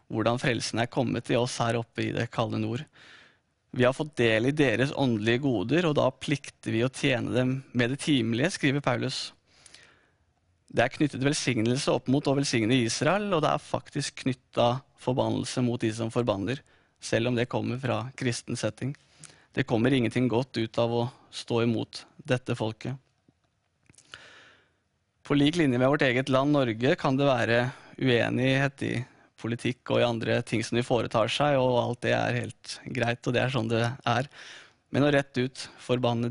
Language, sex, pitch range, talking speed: English, male, 120-135 Hz, 180 wpm